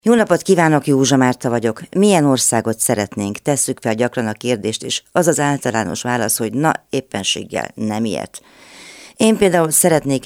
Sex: female